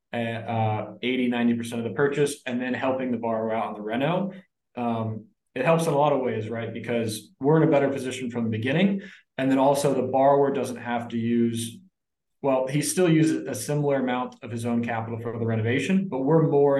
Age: 20-39